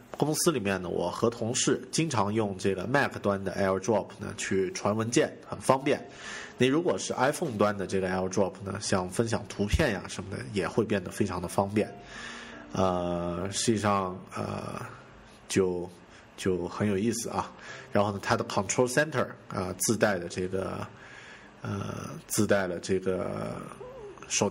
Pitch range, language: 95-120 Hz, Chinese